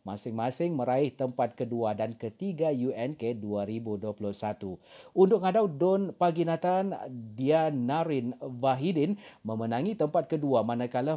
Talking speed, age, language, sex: 95 wpm, 40-59, Malay, male